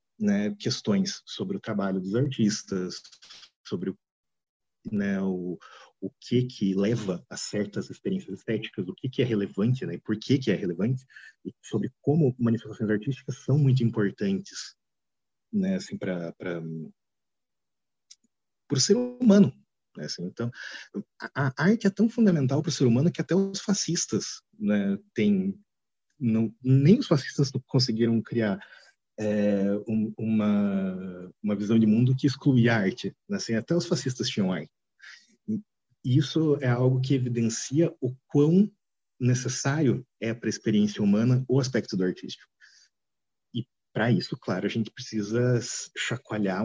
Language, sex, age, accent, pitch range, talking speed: Portuguese, male, 40-59, Brazilian, 110-155 Hz, 140 wpm